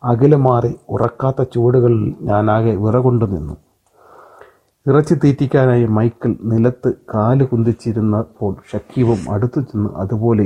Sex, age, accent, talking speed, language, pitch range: male, 30-49, native, 105 wpm, Malayalam, 110-130 Hz